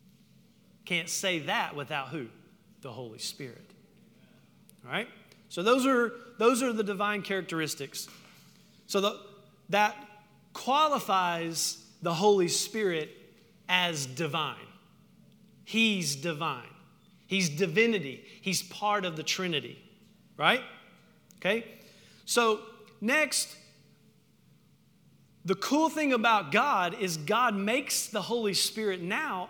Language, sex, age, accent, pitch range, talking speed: English, male, 40-59, American, 185-240 Hz, 105 wpm